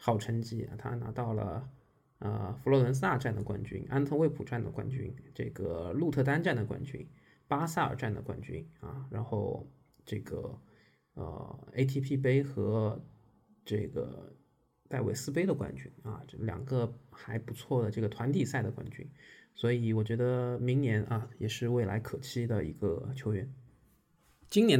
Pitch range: 110-135 Hz